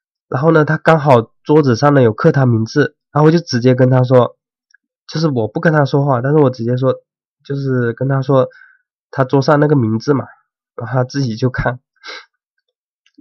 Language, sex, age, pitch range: Chinese, male, 20-39, 120-155 Hz